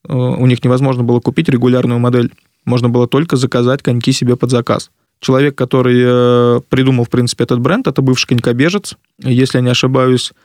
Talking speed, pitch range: 165 wpm, 120-130 Hz